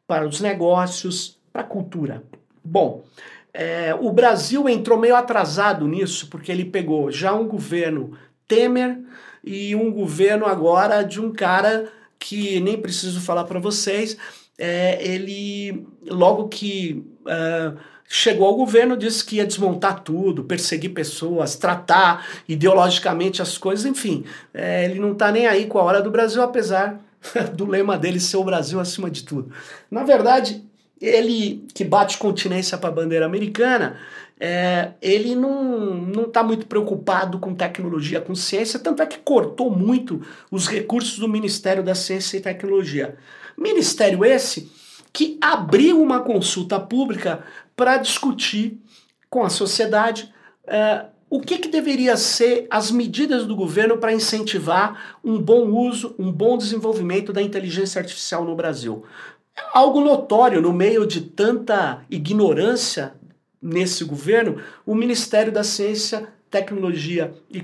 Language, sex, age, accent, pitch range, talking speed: Portuguese, male, 50-69, Brazilian, 185-230 Hz, 140 wpm